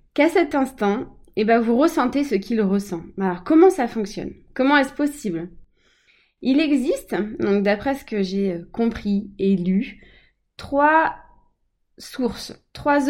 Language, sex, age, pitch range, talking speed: French, female, 20-39, 200-270 Hz, 140 wpm